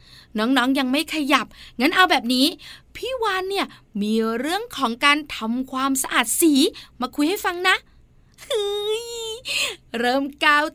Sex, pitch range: female, 260-345 Hz